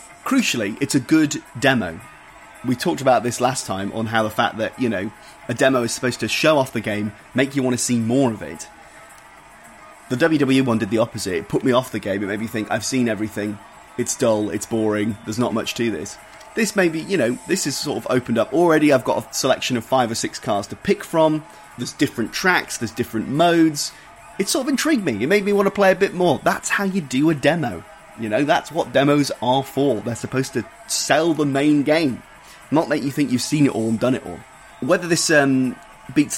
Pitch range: 110-150 Hz